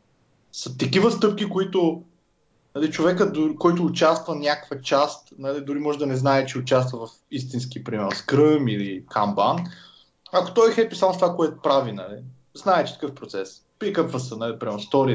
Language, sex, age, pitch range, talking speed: Bulgarian, male, 20-39, 125-180 Hz, 165 wpm